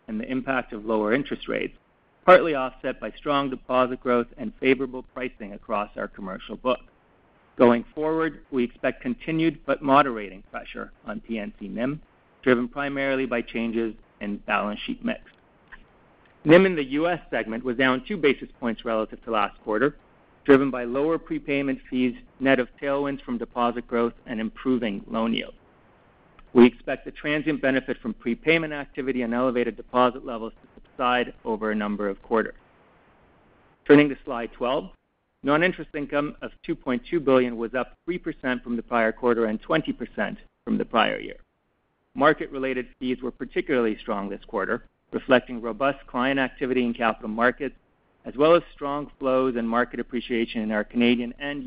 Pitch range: 120-140 Hz